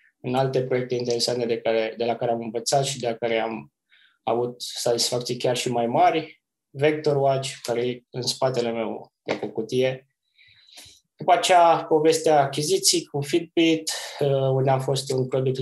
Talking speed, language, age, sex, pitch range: 165 wpm, Romanian, 20-39, male, 120-145 Hz